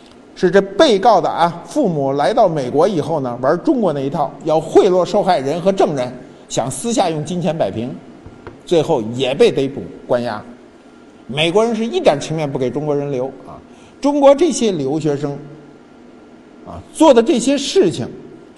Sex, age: male, 50-69